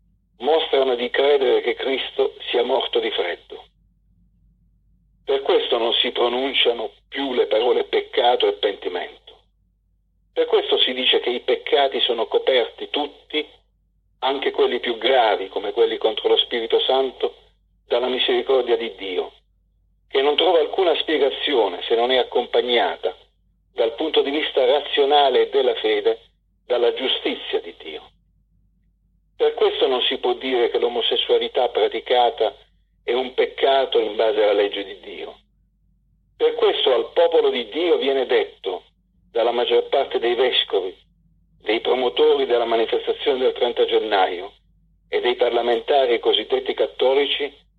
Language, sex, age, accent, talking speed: Italian, male, 50-69, native, 125 wpm